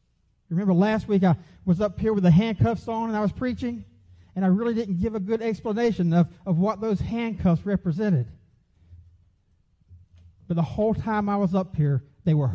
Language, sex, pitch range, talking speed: English, male, 145-200 Hz, 185 wpm